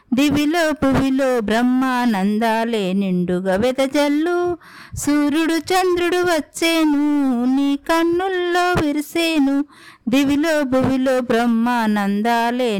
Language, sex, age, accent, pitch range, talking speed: Telugu, female, 50-69, native, 265-335 Hz, 65 wpm